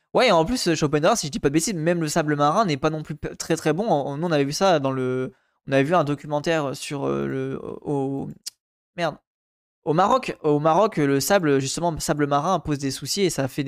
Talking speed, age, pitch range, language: 245 wpm, 20-39, 140-170 Hz, French